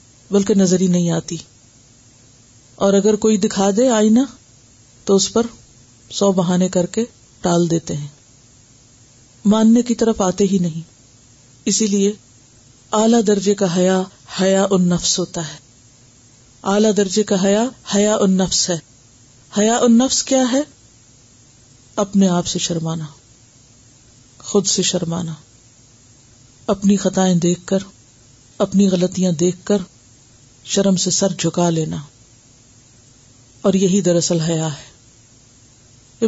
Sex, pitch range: female, 125-200 Hz